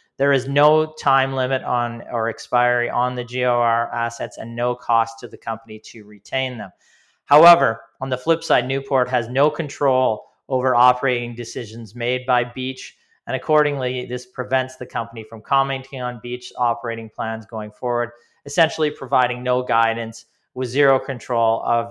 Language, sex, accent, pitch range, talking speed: English, male, American, 115-135 Hz, 160 wpm